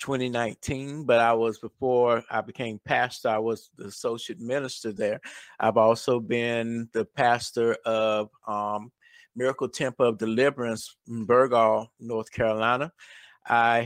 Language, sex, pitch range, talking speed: English, male, 115-125 Hz, 130 wpm